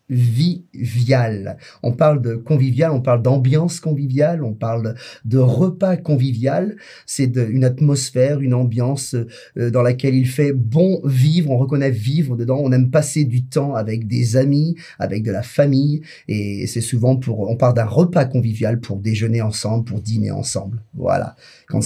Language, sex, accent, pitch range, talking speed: French, male, French, 120-150 Hz, 165 wpm